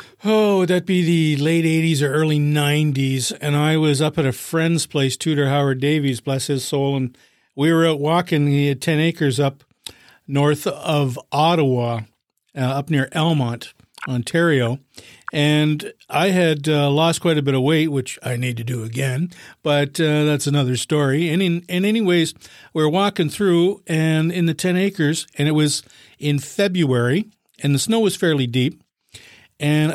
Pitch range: 140-170 Hz